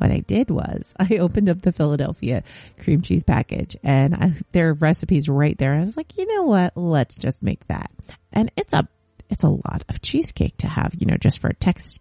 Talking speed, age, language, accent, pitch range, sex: 225 wpm, 30-49, English, American, 145-180 Hz, female